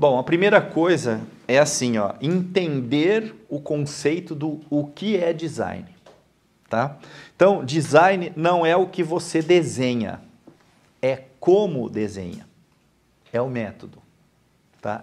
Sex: male